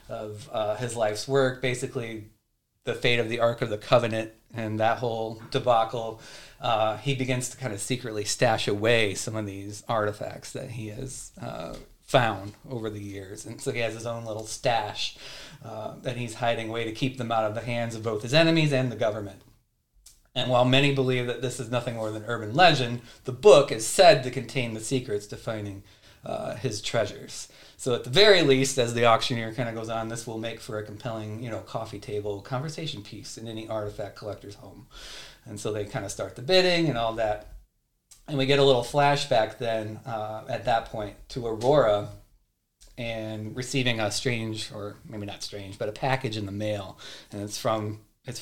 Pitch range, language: 110-130 Hz, English